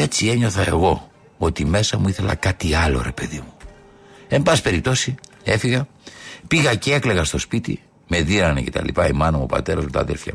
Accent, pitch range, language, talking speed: Spanish, 80-120 Hz, Greek, 185 wpm